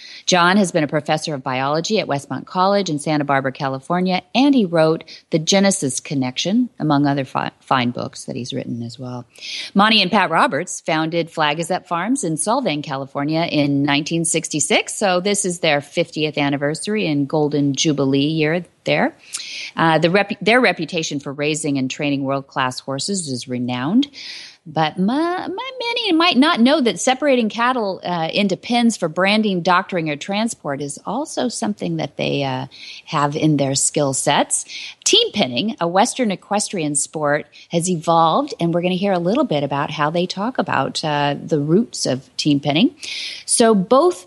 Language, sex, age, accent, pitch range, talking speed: English, female, 40-59, American, 145-195 Hz, 170 wpm